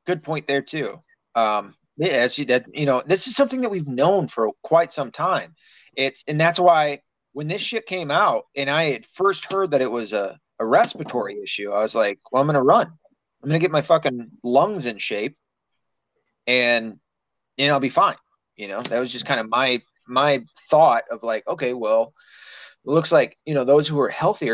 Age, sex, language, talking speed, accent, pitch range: 30-49, male, English, 210 wpm, American, 125-175 Hz